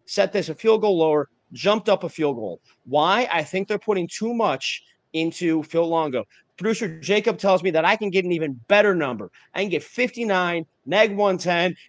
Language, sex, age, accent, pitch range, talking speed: English, male, 30-49, American, 155-205 Hz, 195 wpm